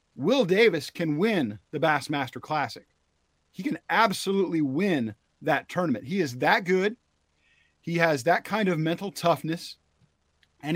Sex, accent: male, American